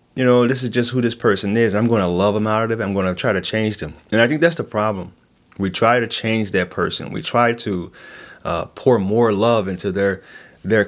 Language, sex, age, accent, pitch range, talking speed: English, male, 30-49, American, 95-120 Hz, 255 wpm